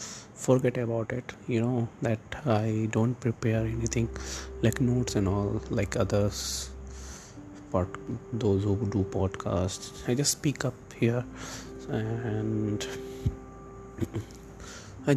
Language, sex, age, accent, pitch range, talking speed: English, male, 30-49, Indian, 100-130 Hz, 110 wpm